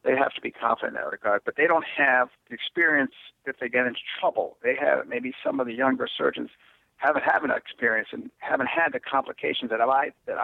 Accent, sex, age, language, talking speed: American, male, 50-69, English, 225 wpm